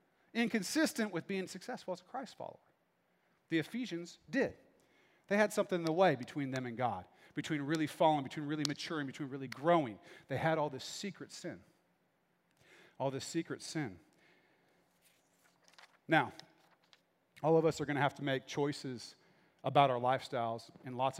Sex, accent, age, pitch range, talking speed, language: male, American, 40-59, 140-185 Hz, 160 wpm, English